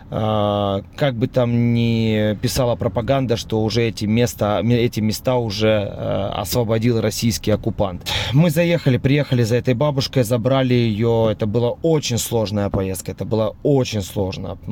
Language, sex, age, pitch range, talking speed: Ukrainian, male, 20-39, 105-125 Hz, 135 wpm